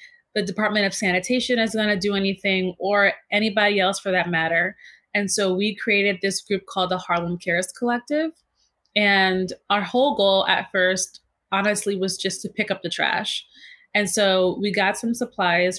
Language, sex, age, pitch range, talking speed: English, female, 20-39, 190-230 Hz, 175 wpm